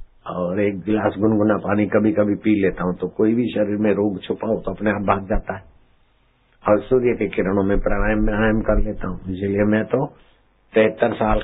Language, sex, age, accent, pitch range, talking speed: Hindi, male, 60-79, native, 95-115 Hz, 180 wpm